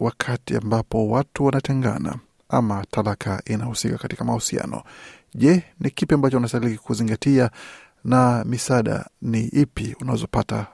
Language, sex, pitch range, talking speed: Swahili, male, 115-135 Hz, 110 wpm